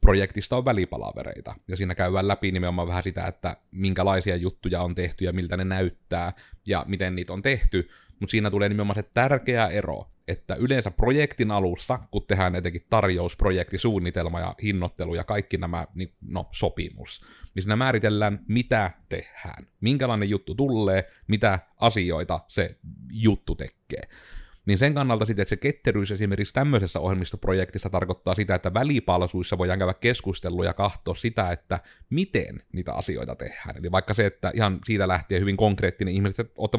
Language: Finnish